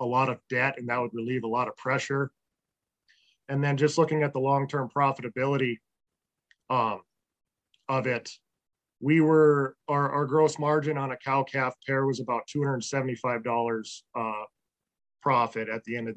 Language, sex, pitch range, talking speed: English, male, 120-145 Hz, 165 wpm